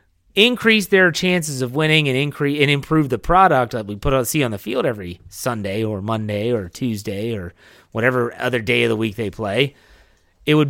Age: 30-49